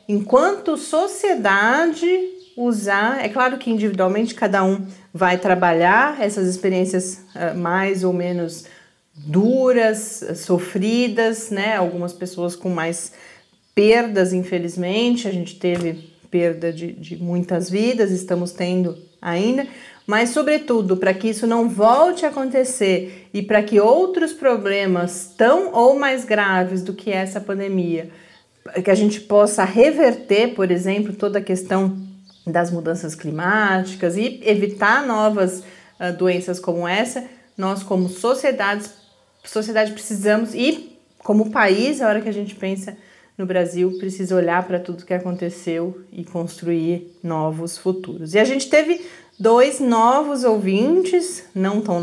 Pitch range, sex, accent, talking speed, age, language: 180-230 Hz, female, Brazilian, 135 wpm, 40-59, Portuguese